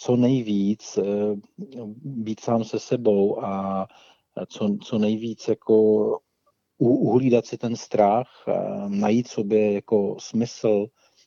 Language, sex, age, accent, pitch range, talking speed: Czech, male, 40-59, native, 100-115 Hz, 100 wpm